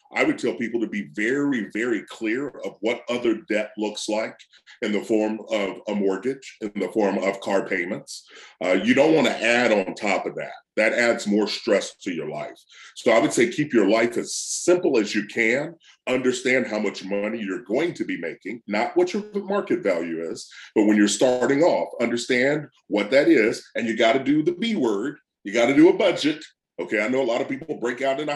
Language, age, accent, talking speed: English, 40-59, American, 215 wpm